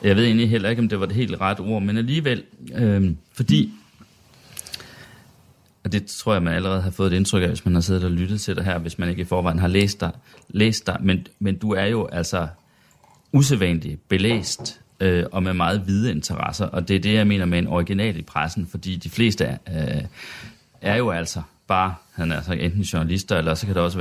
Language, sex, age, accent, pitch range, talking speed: Danish, male, 30-49, native, 85-110 Hz, 225 wpm